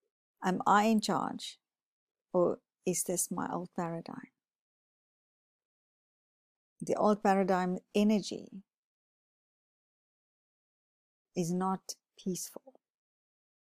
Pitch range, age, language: 175-220 Hz, 50-69, English